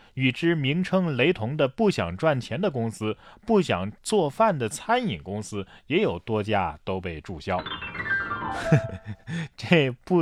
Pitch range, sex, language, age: 110-170 Hz, male, Chinese, 20-39